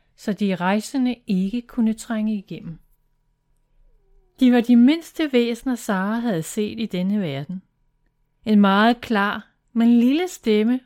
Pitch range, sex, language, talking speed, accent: 165-235 Hz, female, Danish, 135 wpm, native